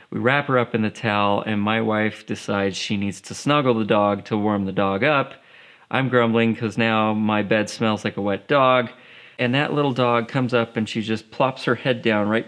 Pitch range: 110-130 Hz